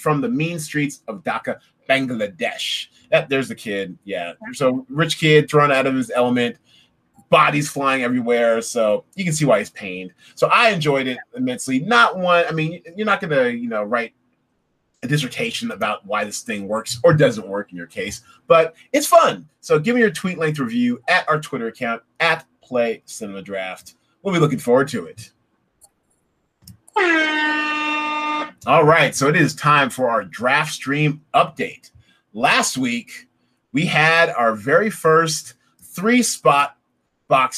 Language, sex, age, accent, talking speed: English, male, 30-49, American, 165 wpm